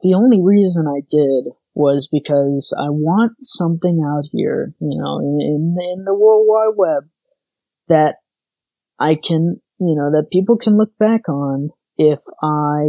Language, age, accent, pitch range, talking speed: English, 30-49, American, 140-165 Hz, 165 wpm